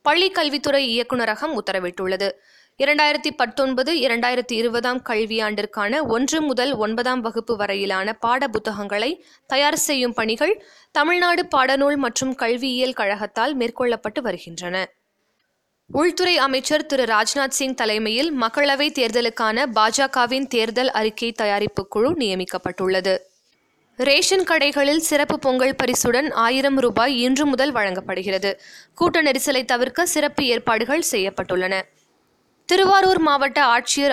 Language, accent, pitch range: Tamil, native, 220-285 Hz